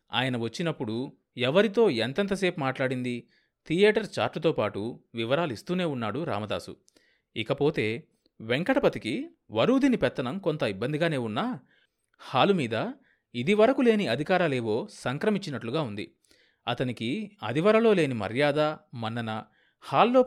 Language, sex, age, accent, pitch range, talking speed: Telugu, male, 30-49, native, 115-180 Hz, 90 wpm